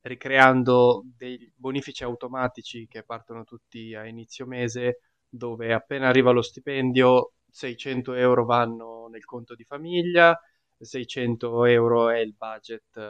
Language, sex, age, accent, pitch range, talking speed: Italian, male, 20-39, native, 115-135 Hz, 125 wpm